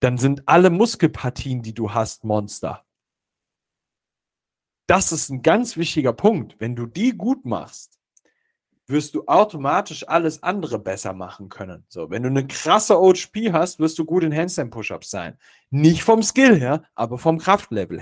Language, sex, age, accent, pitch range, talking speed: German, male, 40-59, German, 130-175 Hz, 160 wpm